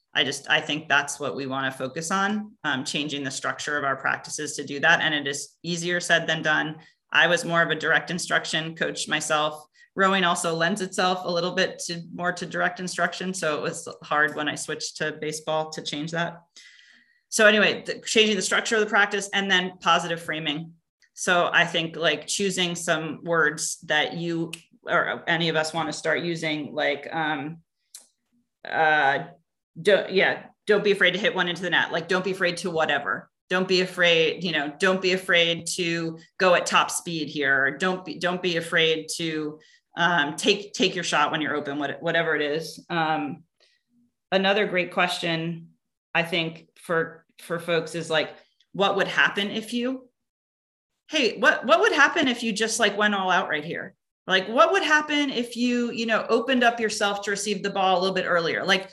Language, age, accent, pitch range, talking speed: English, 30-49, American, 155-195 Hz, 195 wpm